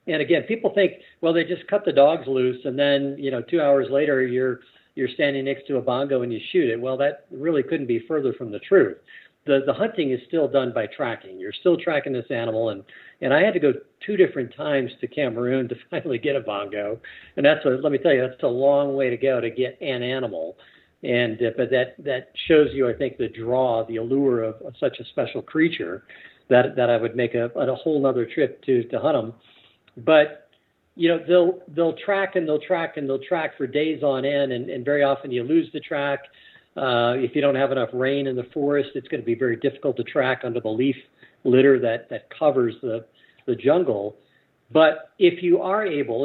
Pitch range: 125-160 Hz